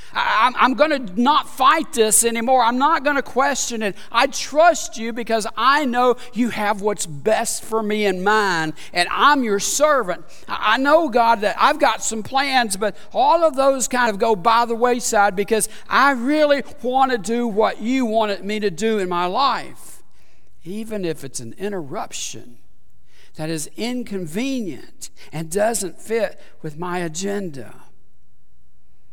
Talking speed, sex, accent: 160 wpm, male, American